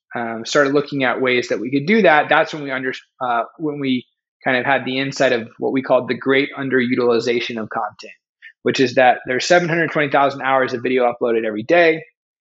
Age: 20-39